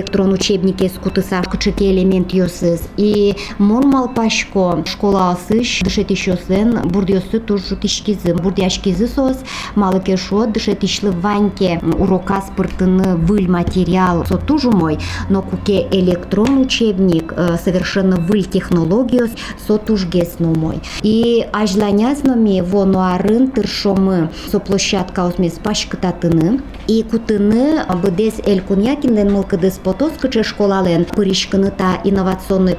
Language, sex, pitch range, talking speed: Russian, male, 185-220 Hz, 85 wpm